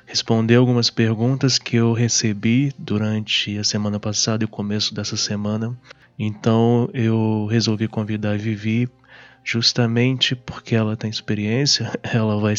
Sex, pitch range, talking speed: male, 105-115 Hz, 135 wpm